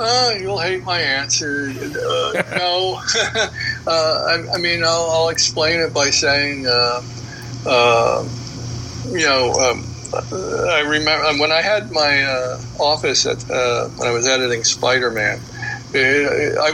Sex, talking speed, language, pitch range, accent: male, 140 wpm, English, 120-150 Hz, American